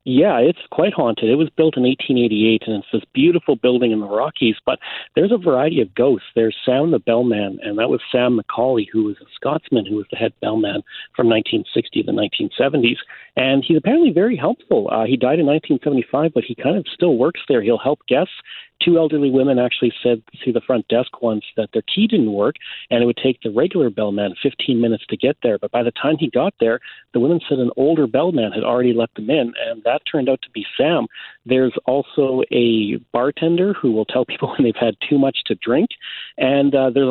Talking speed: 220 wpm